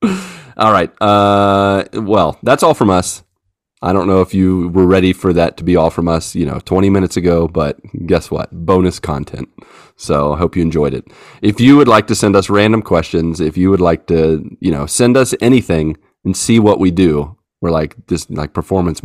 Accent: American